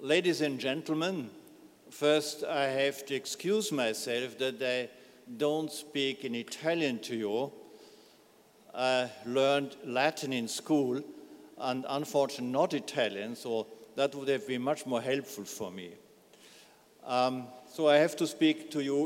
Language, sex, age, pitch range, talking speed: Italian, male, 50-69, 130-150 Hz, 140 wpm